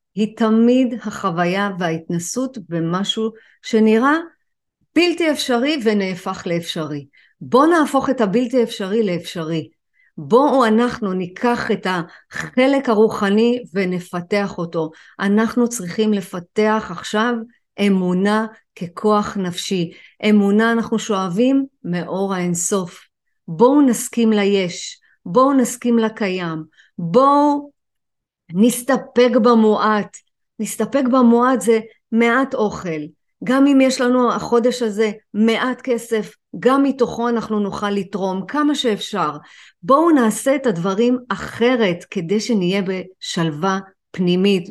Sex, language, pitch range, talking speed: female, Hebrew, 190-245 Hz, 100 wpm